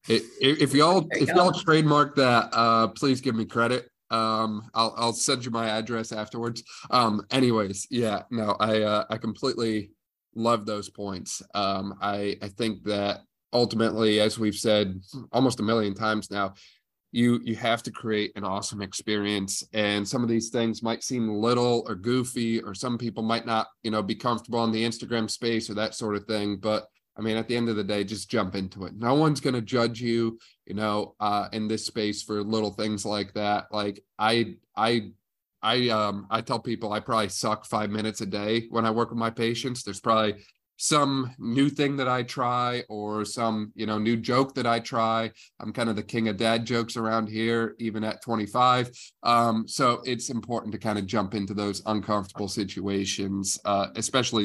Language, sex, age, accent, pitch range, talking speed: English, male, 20-39, American, 105-115 Hz, 195 wpm